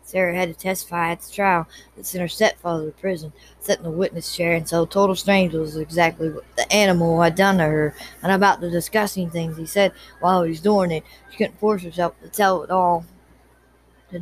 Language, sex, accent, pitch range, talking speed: English, female, American, 165-195 Hz, 220 wpm